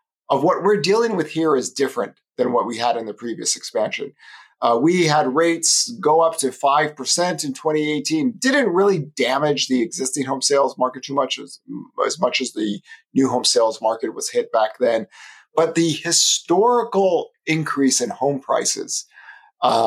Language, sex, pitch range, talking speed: English, male, 135-195 Hz, 170 wpm